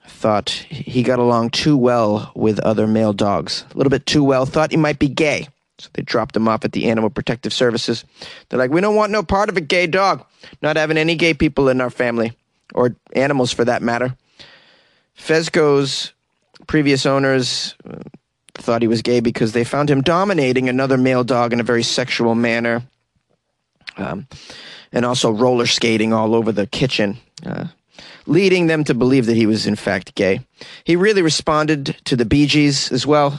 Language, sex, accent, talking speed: English, male, American, 185 wpm